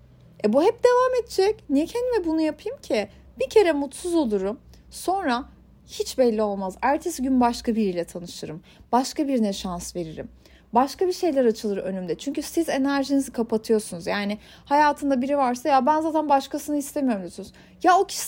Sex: female